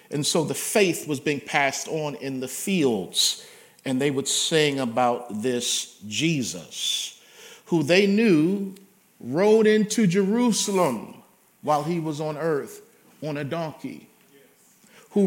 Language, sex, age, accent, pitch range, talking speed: English, male, 50-69, American, 130-170 Hz, 130 wpm